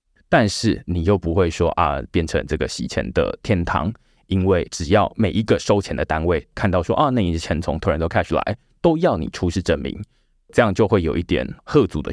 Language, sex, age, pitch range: Chinese, male, 20-39, 80-95 Hz